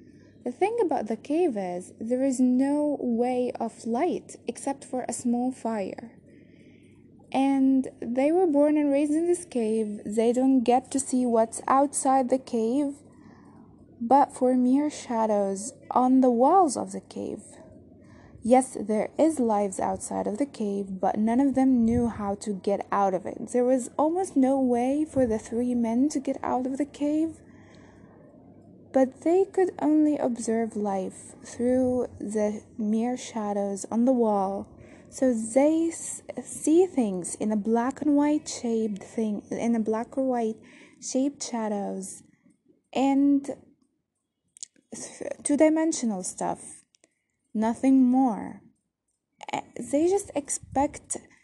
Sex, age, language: female, 20-39, English